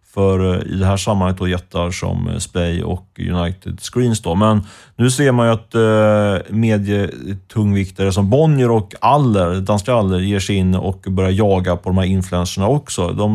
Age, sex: 30-49, male